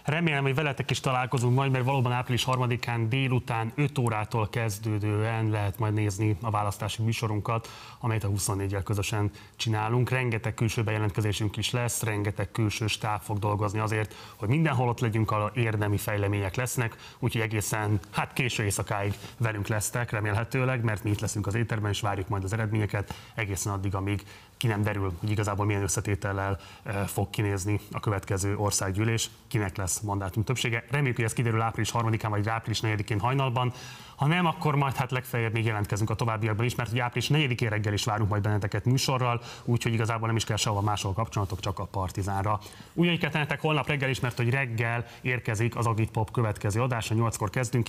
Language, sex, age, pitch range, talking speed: Hungarian, male, 30-49, 105-125 Hz, 175 wpm